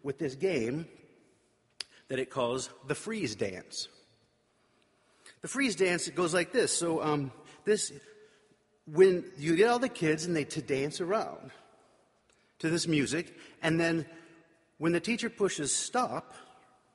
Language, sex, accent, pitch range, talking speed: English, male, American, 130-190 Hz, 140 wpm